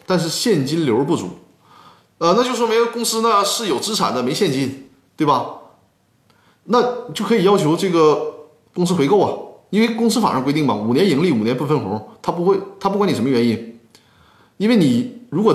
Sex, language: male, Chinese